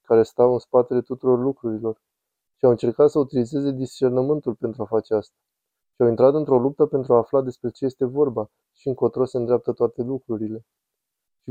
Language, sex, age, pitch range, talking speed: Romanian, male, 20-39, 115-135 Hz, 180 wpm